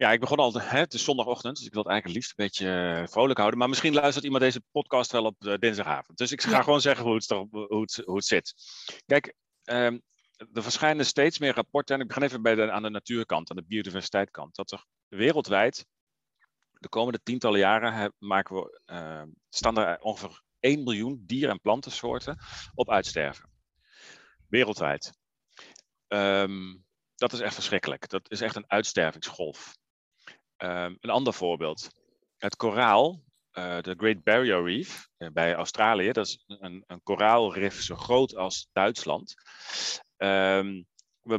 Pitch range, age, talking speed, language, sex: 95-120 Hz, 40-59, 165 wpm, Dutch, male